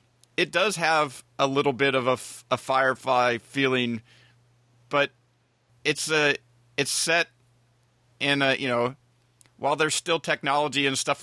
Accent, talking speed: American, 140 wpm